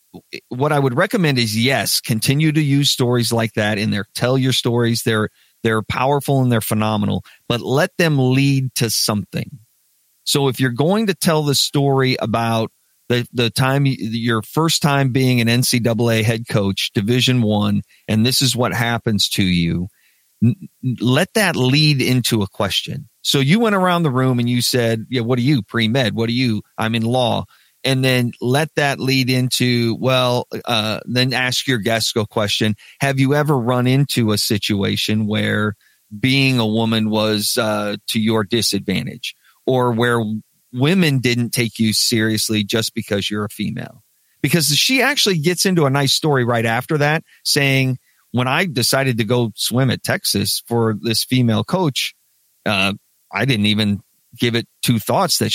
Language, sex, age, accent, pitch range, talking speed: English, male, 40-59, American, 110-135 Hz, 175 wpm